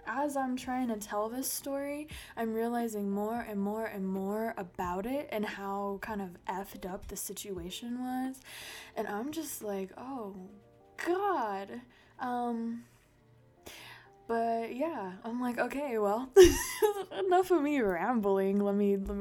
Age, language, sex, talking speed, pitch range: 20-39, English, female, 140 wpm, 195-245 Hz